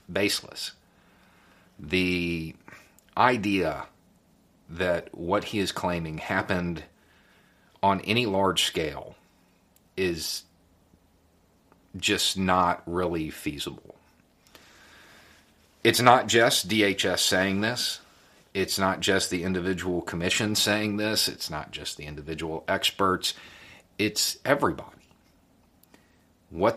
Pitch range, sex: 90-110 Hz, male